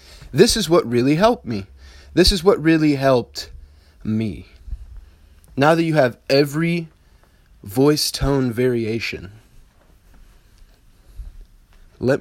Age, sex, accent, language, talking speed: 20-39, male, American, English, 105 wpm